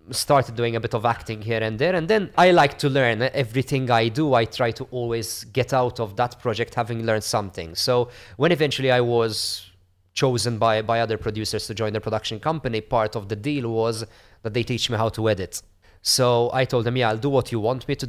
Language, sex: English, male